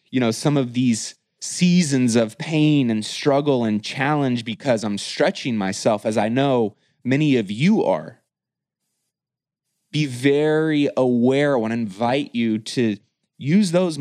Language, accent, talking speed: English, American, 145 wpm